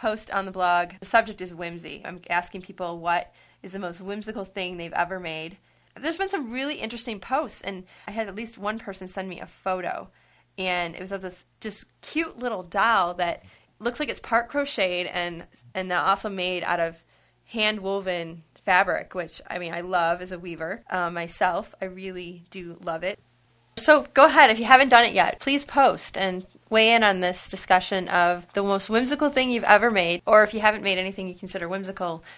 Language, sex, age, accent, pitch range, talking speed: English, female, 20-39, American, 175-205 Hz, 200 wpm